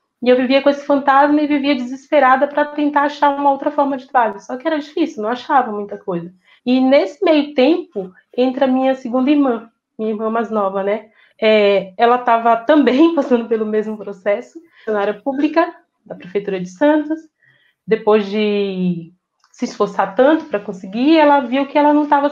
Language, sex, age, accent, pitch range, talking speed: Portuguese, female, 20-39, Brazilian, 215-285 Hz, 180 wpm